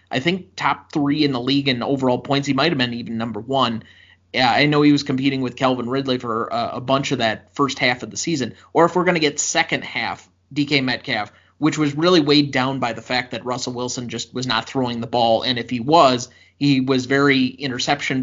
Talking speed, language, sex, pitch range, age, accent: 230 wpm, English, male, 120-140 Hz, 30-49, American